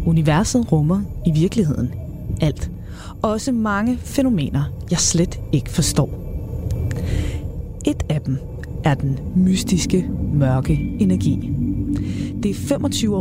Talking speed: 105 wpm